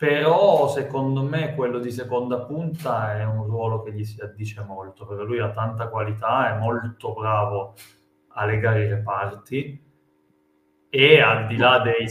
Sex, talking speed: male, 160 wpm